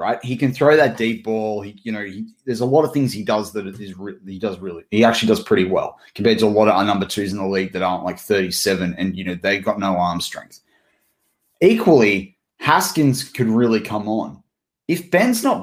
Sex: male